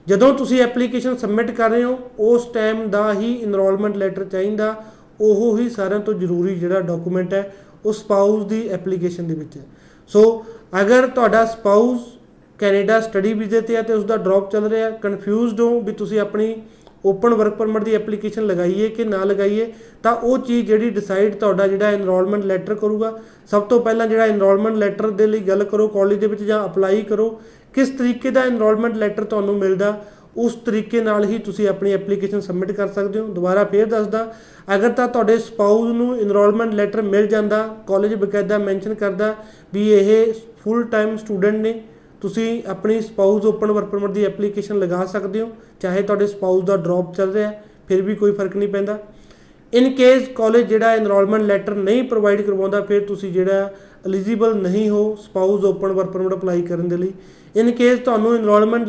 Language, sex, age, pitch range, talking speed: Punjabi, male, 30-49, 195-225 Hz, 160 wpm